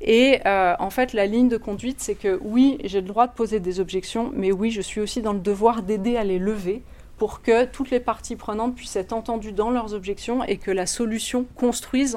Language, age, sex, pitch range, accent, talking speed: English, 30-49, female, 195-240 Hz, French, 230 wpm